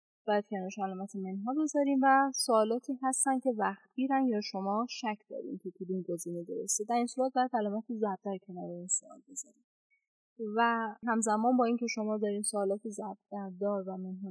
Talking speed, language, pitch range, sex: 160 wpm, Persian, 195-250 Hz, female